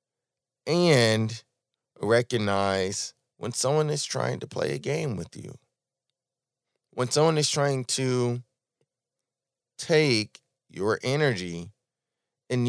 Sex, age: male, 30-49